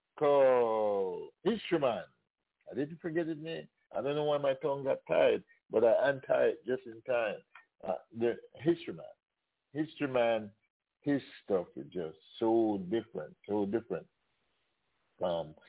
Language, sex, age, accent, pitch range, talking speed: English, male, 50-69, American, 110-165 Hz, 135 wpm